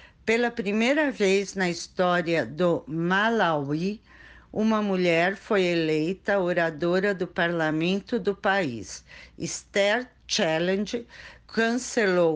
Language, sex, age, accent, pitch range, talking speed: Portuguese, female, 50-69, Brazilian, 170-220 Hz, 90 wpm